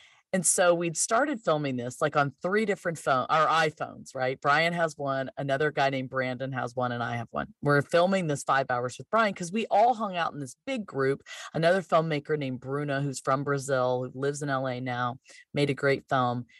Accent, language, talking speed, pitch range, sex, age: American, English, 215 wpm, 135-195 Hz, female, 40-59